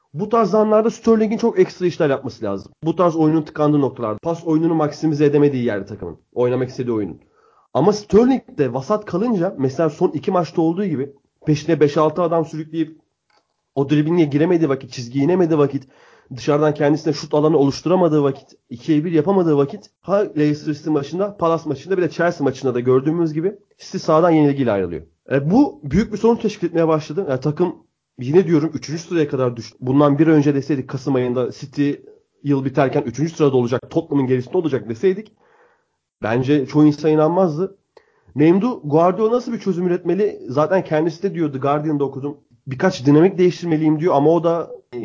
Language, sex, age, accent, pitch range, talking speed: Turkish, male, 30-49, native, 135-175 Hz, 165 wpm